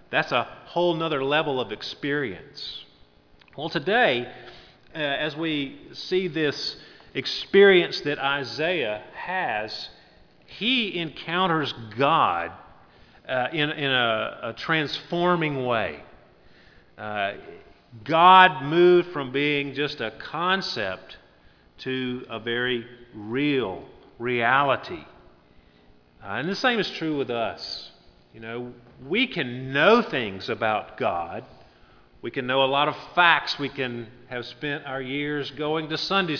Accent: American